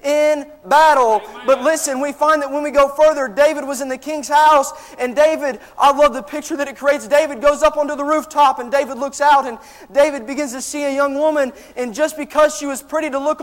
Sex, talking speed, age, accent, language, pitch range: male, 230 wpm, 30-49, American, English, 285-315 Hz